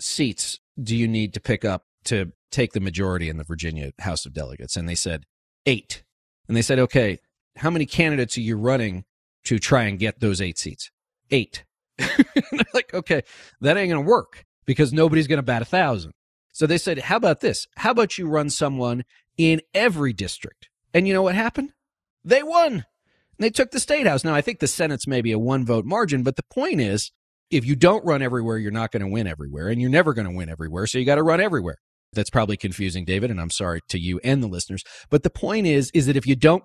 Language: English